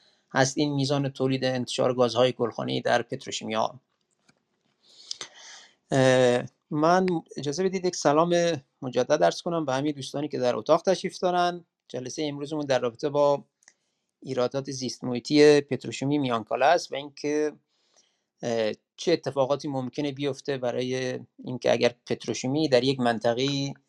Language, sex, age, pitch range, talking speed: Persian, male, 30-49, 120-145 Hz, 125 wpm